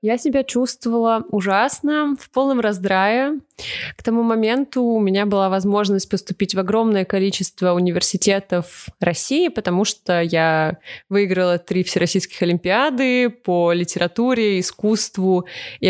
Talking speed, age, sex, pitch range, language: 115 wpm, 20-39, female, 180-220 Hz, Russian